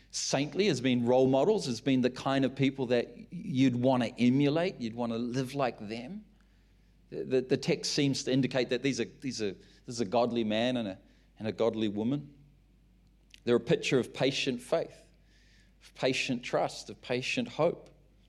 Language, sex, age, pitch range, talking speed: English, male, 40-59, 120-140 Hz, 185 wpm